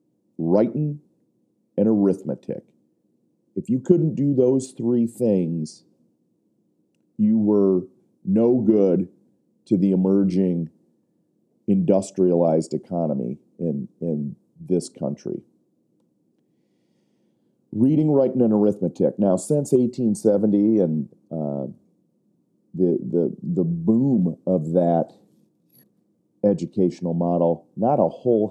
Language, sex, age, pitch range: English, male, 40-59, 85-115 Hz